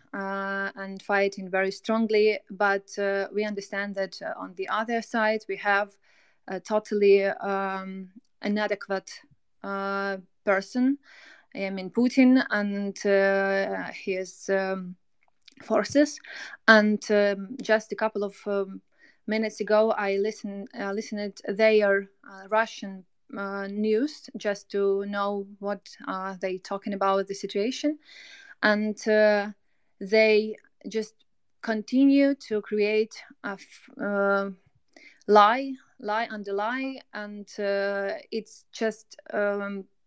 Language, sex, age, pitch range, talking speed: English, female, 20-39, 195-225 Hz, 120 wpm